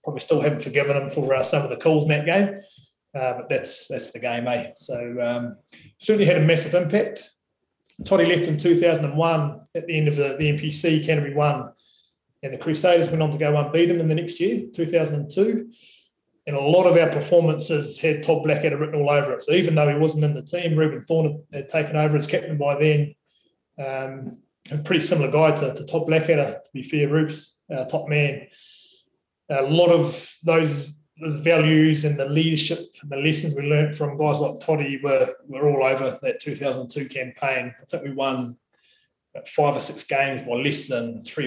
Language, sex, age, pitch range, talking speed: English, male, 20-39, 135-165 Hz, 200 wpm